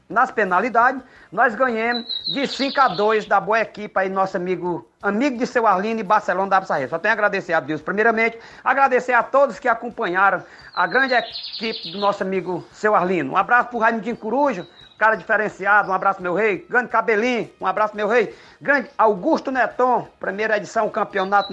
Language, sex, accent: Portuguese, male, Brazilian